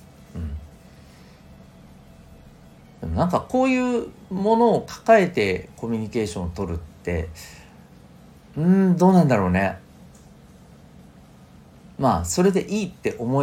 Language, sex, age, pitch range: Japanese, male, 40-59, 80-115 Hz